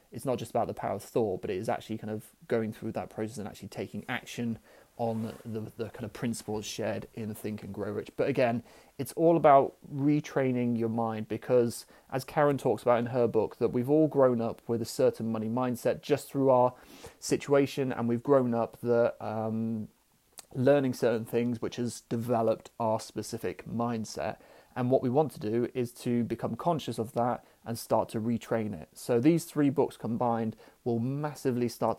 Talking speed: 195 wpm